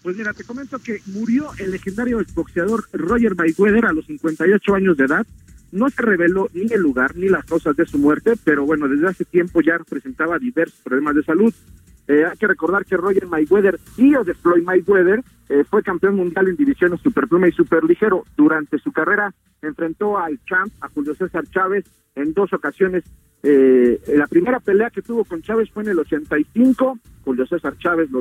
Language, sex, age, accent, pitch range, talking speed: Spanish, male, 50-69, Mexican, 145-195 Hz, 195 wpm